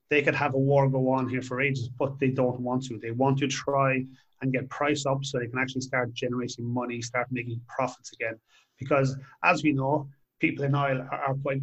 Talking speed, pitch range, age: 220 wpm, 130-145 Hz, 30-49